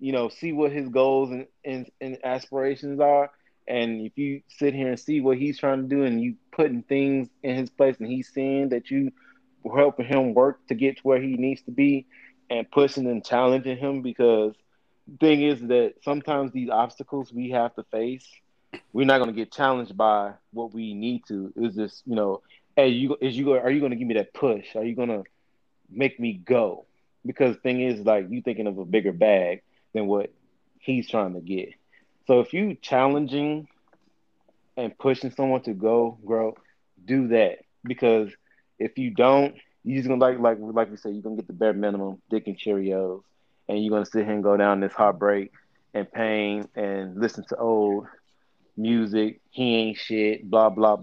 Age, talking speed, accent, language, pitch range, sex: 20-39, 205 wpm, American, English, 110-135 Hz, male